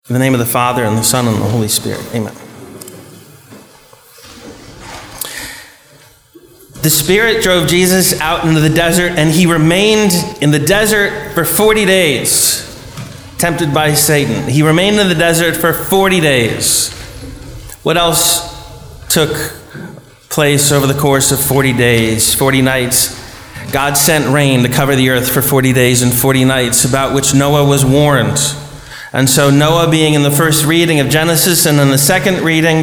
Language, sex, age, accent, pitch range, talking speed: English, male, 30-49, American, 130-165 Hz, 160 wpm